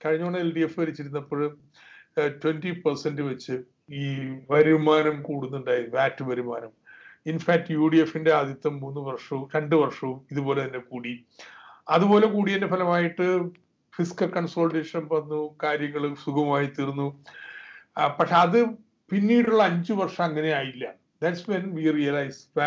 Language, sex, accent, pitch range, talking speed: Malayalam, male, native, 140-175 Hz, 110 wpm